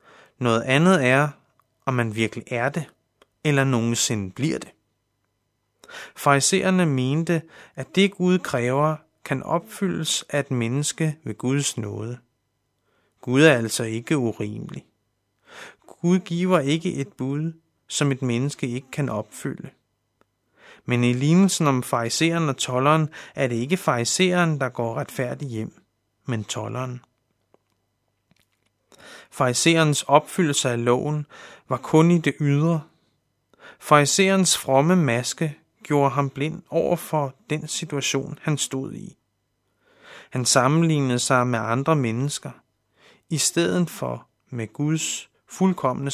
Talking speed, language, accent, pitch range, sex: 120 wpm, Danish, native, 125-160 Hz, male